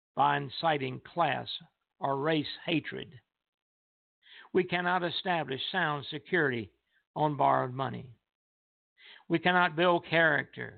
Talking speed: 100 wpm